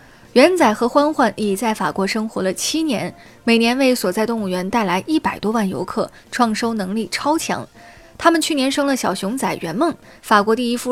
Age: 20-39